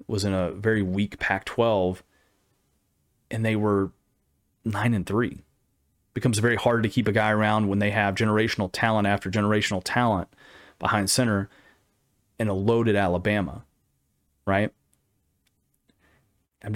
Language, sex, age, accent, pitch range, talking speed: English, male, 30-49, American, 100-120 Hz, 135 wpm